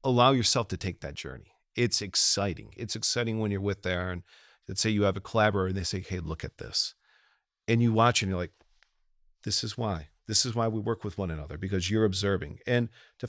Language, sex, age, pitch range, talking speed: English, male, 40-59, 95-120 Hz, 225 wpm